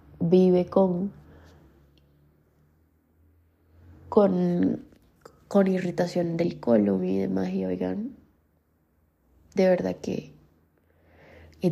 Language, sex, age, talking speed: Spanish, female, 20-39, 75 wpm